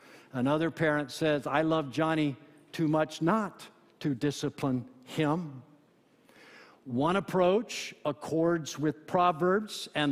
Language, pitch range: English, 155-210 Hz